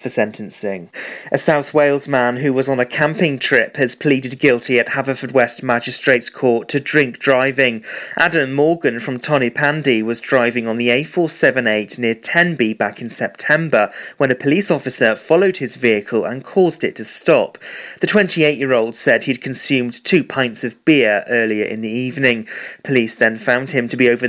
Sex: male